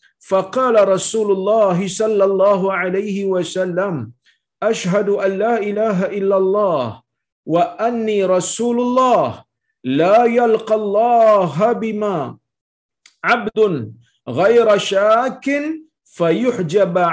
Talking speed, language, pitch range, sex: 85 wpm, Malayalam, 180-230 Hz, male